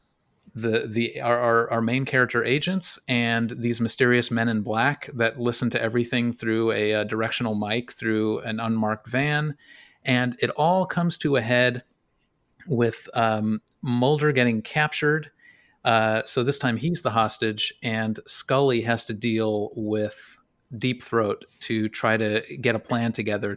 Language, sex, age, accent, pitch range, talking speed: English, male, 30-49, American, 110-125 Hz, 155 wpm